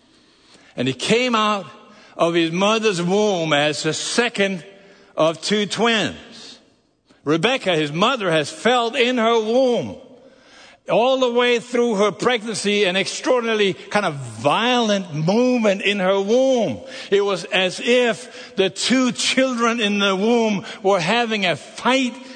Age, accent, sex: 60-79, American, male